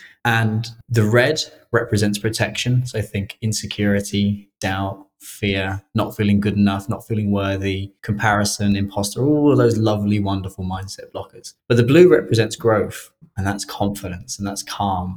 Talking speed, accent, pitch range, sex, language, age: 150 wpm, British, 95-110 Hz, male, English, 20-39